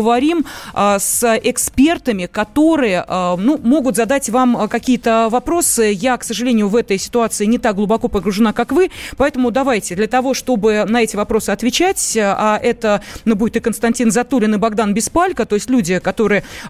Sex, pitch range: female, 200-250 Hz